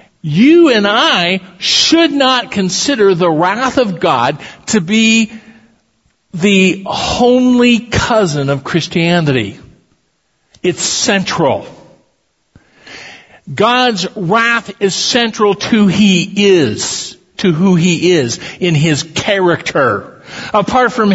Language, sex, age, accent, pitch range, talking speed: English, male, 50-69, American, 170-225 Hz, 100 wpm